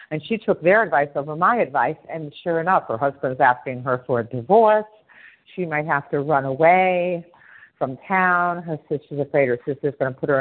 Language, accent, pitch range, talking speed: English, American, 145-180 Hz, 200 wpm